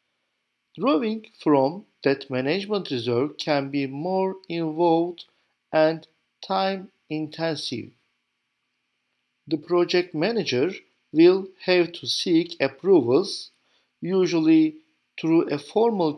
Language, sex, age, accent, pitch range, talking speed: Turkish, male, 50-69, native, 140-200 Hz, 85 wpm